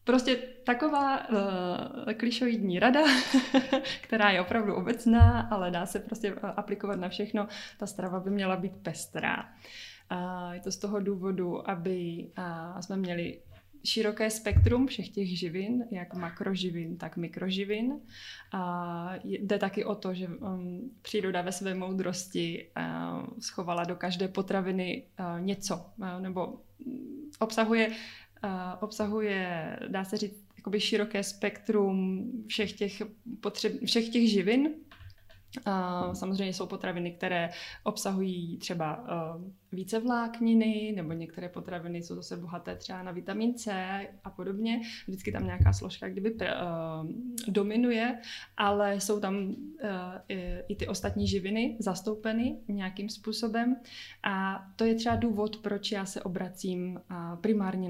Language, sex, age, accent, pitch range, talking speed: Czech, female, 20-39, native, 180-220 Hz, 115 wpm